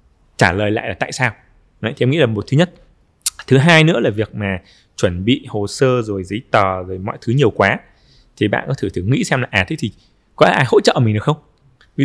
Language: Vietnamese